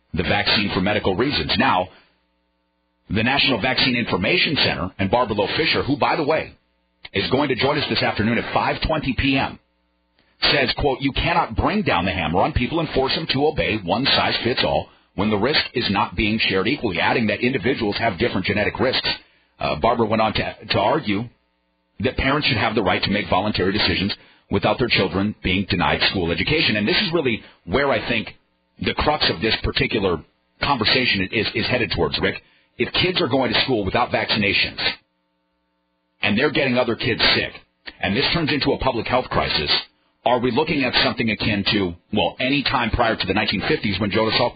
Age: 40-59